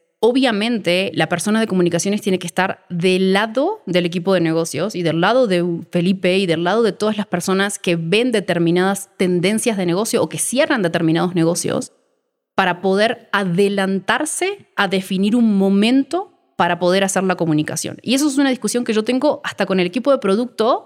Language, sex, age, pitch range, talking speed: Spanish, female, 20-39, 185-255 Hz, 180 wpm